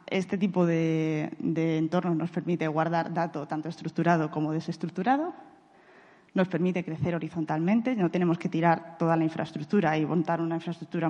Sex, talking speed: female, 150 wpm